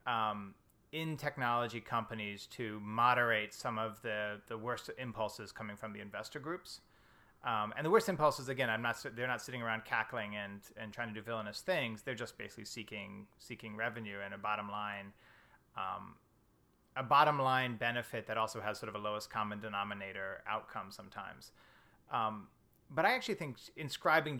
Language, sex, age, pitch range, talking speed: English, male, 30-49, 110-130 Hz, 160 wpm